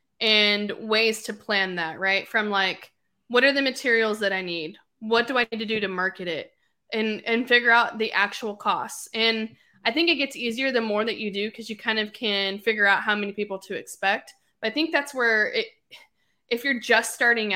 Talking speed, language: 215 wpm, English